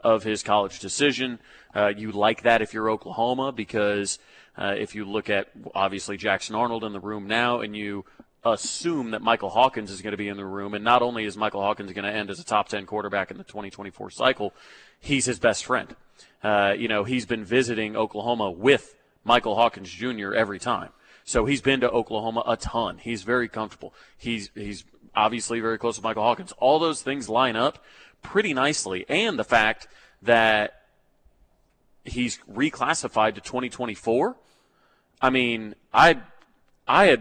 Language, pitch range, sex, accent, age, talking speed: English, 105-125 Hz, male, American, 30-49, 175 wpm